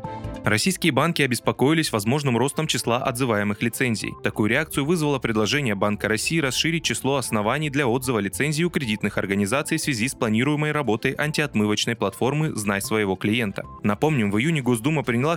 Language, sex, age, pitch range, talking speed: Russian, male, 20-39, 110-150 Hz, 150 wpm